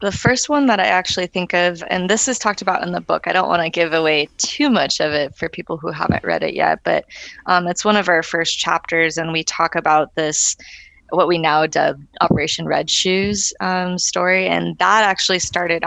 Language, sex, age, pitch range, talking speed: English, female, 20-39, 155-185 Hz, 225 wpm